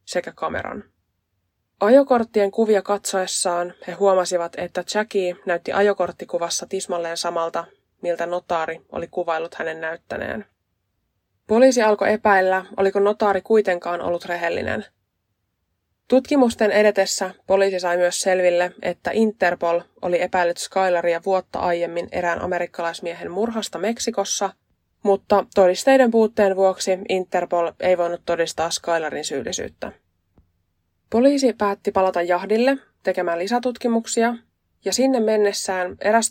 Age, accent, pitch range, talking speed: 20-39, native, 170-205 Hz, 105 wpm